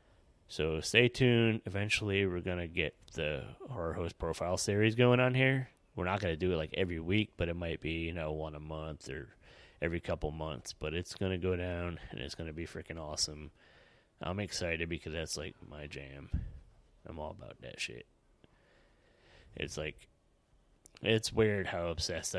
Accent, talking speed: American, 175 wpm